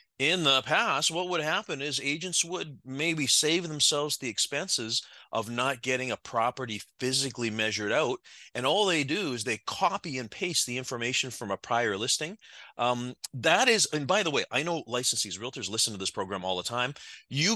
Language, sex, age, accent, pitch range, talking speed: English, male, 30-49, American, 105-140 Hz, 190 wpm